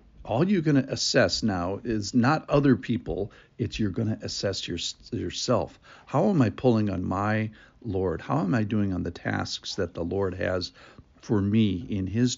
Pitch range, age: 110-135 Hz, 50-69